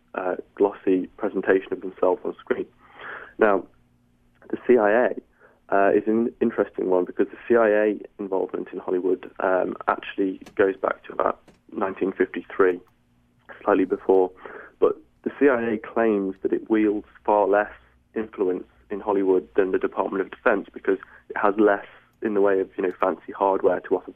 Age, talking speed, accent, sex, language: 20-39, 150 wpm, British, male, English